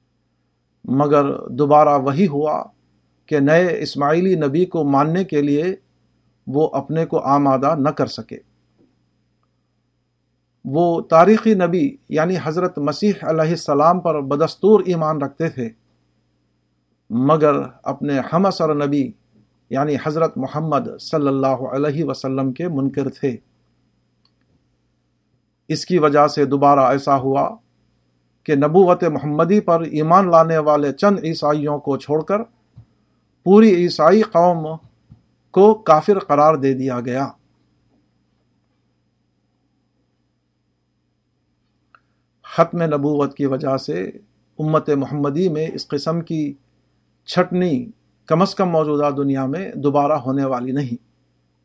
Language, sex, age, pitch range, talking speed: Urdu, male, 50-69, 130-165 Hz, 115 wpm